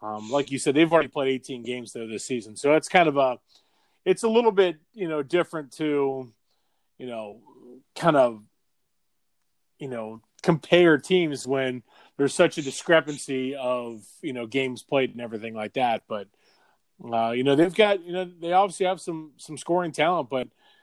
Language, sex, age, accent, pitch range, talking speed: English, male, 30-49, American, 125-170 Hz, 180 wpm